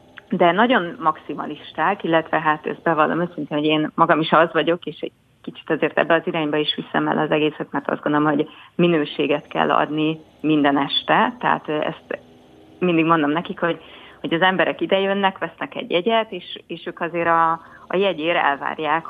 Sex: female